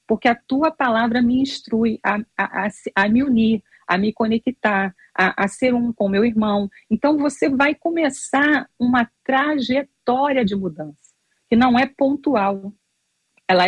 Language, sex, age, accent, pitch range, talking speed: Portuguese, female, 40-59, Brazilian, 195-250 Hz, 145 wpm